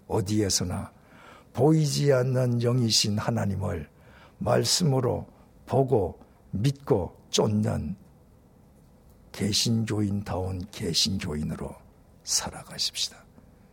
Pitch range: 100-130 Hz